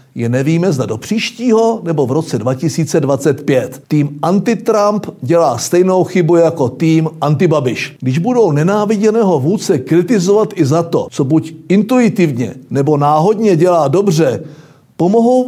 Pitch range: 140-180 Hz